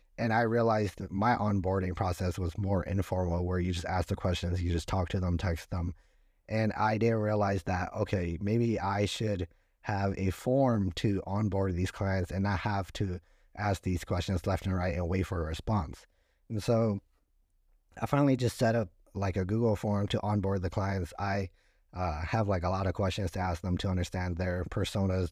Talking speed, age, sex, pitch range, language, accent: 200 wpm, 30-49, male, 90-105 Hz, English, American